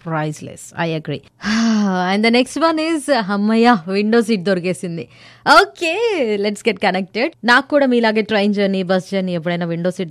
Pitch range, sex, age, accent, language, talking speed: 175-225 Hz, female, 20-39, native, Telugu, 155 wpm